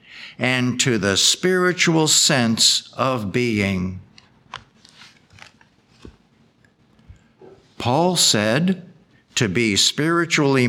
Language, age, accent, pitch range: English, 60-79, American, 115-170 Hz